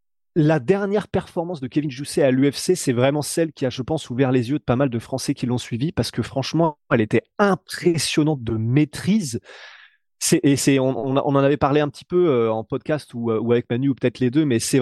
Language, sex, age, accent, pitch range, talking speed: French, male, 30-49, French, 125-165 Hz, 230 wpm